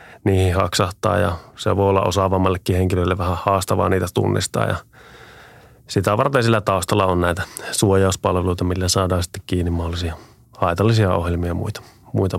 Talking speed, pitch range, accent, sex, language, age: 145 wpm, 90-110 Hz, native, male, Finnish, 30-49